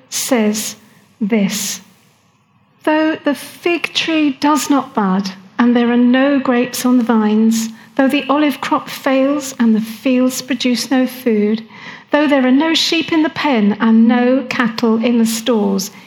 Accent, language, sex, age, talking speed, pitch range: British, English, female, 50-69, 155 wpm, 215-280 Hz